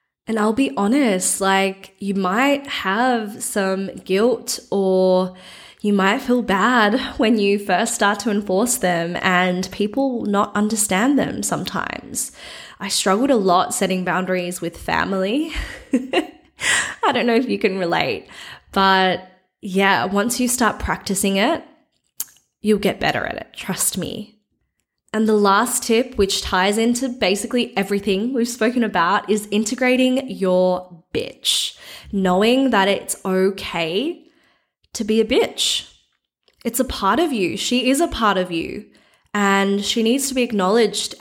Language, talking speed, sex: English, 145 wpm, female